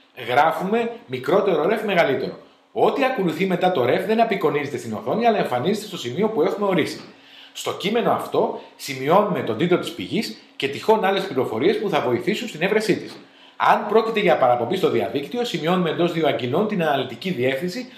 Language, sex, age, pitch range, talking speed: Greek, male, 40-59, 140-215 Hz, 170 wpm